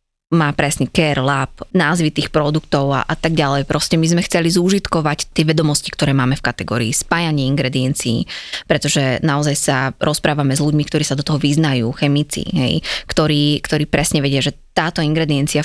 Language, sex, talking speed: Slovak, female, 170 wpm